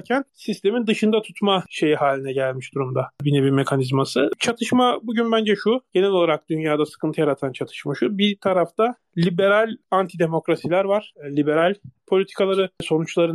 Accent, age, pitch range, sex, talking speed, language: native, 30-49, 140-190 Hz, male, 130 wpm, Turkish